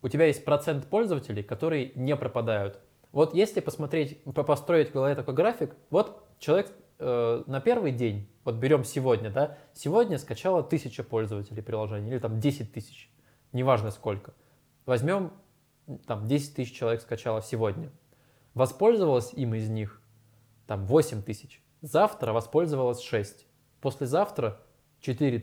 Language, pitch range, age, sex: Russian, 120-150 Hz, 20-39, male